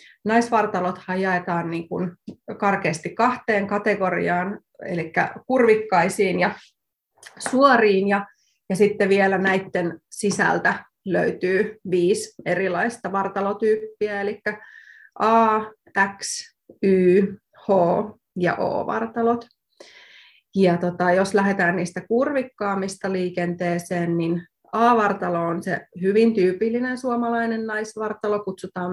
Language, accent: Finnish, native